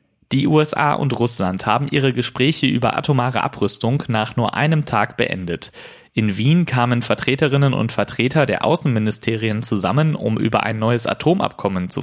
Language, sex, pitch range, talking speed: German, male, 110-145 Hz, 150 wpm